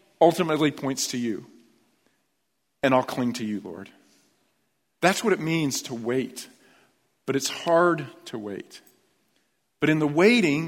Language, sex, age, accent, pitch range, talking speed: English, male, 50-69, American, 140-190 Hz, 140 wpm